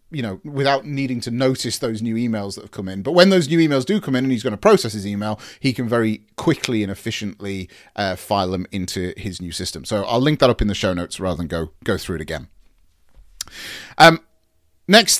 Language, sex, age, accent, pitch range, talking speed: English, male, 30-49, British, 105-140 Hz, 235 wpm